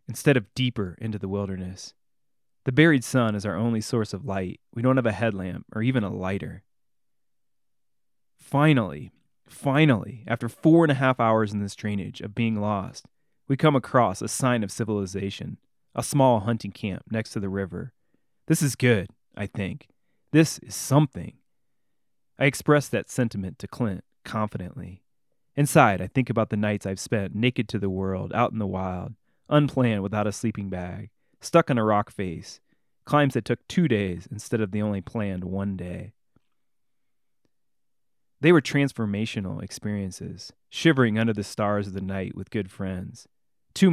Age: 30-49